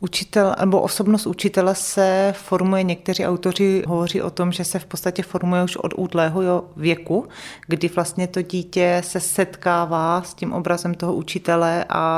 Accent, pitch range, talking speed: native, 165-180 Hz, 155 wpm